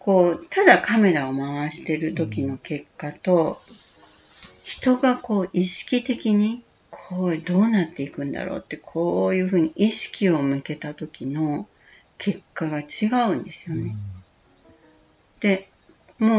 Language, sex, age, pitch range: Japanese, female, 60-79, 145-210 Hz